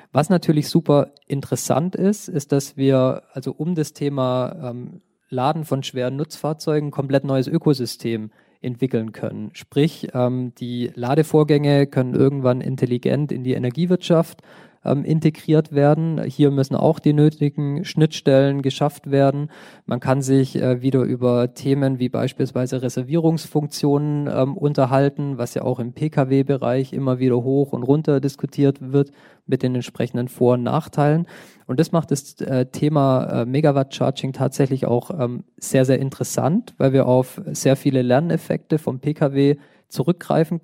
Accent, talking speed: German, 130 wpm